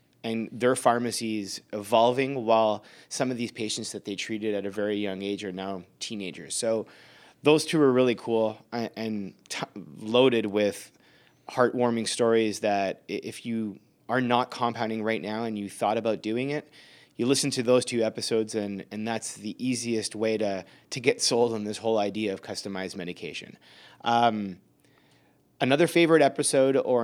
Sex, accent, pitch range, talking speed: male, American, 105-125 Hz, 160 wpm